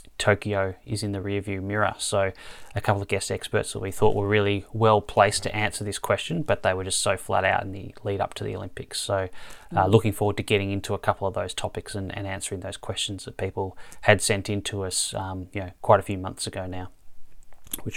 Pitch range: 100-115 Hz